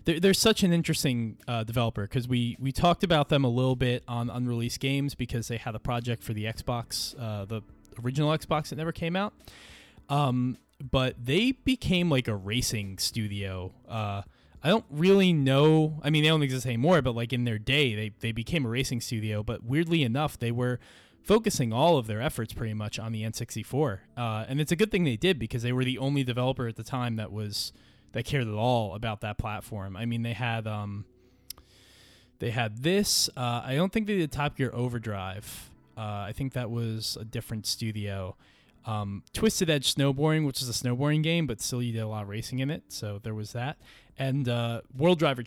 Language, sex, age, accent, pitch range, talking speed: English, male, 20-39, American, 110-145 Hz, 210 wpm